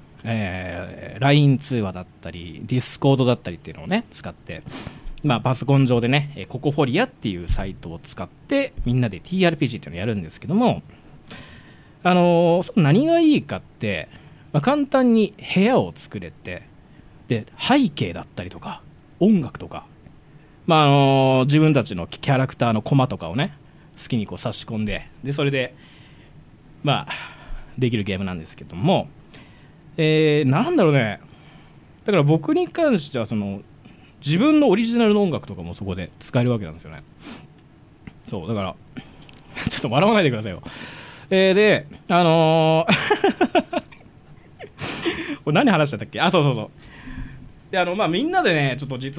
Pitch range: 115-170 Hz